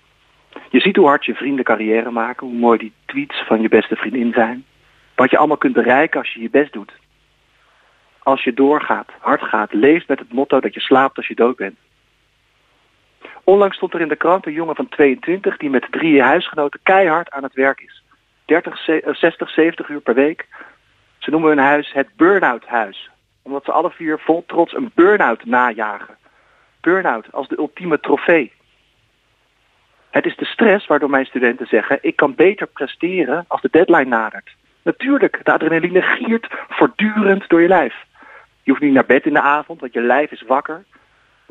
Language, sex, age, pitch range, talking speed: Dutch, male, 50-69, 135-180 Hz, 180 wpm